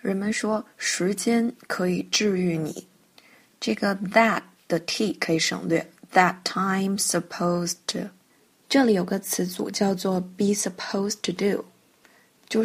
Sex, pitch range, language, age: female, 190-225 Hz, Chinese, 20-39